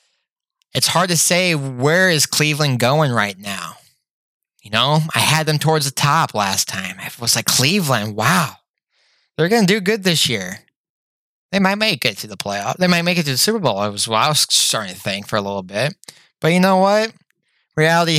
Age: 20-39